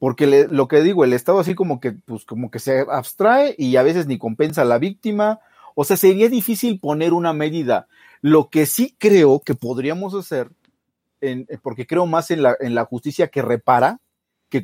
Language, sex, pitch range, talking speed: Italian, male, 130-190 Hz, 200 wpm